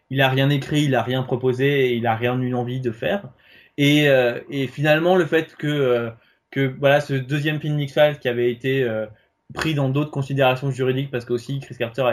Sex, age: male, 20-39